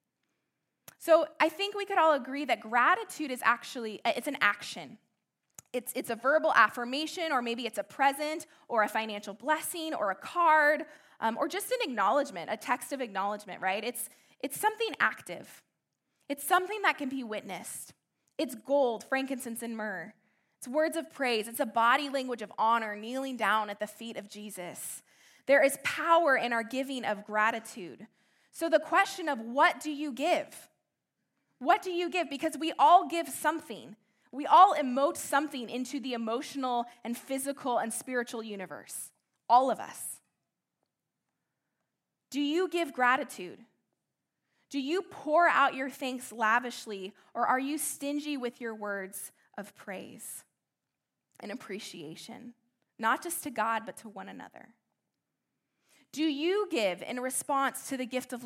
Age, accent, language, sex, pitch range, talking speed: 20-39, American, English, female, 230-305 Hz, 155 wpm